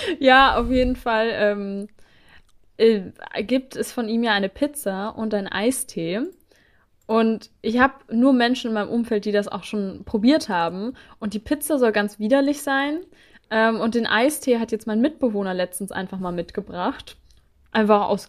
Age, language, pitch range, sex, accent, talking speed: 20-39, German, 215-255 Hz, female, German, 165 wpm